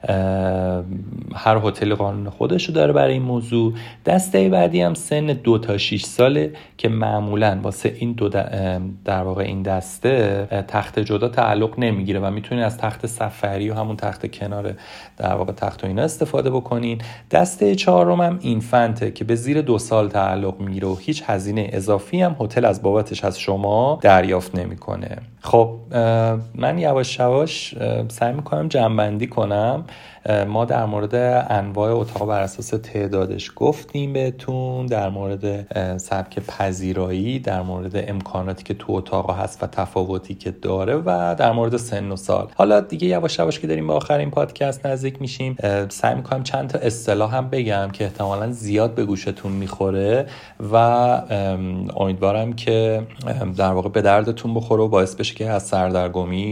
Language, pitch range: Persian, 95-120 Hz